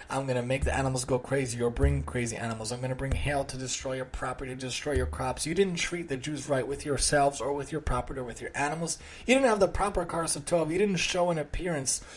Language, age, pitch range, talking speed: English, 30-49, 120-155 Hz, 265 wpm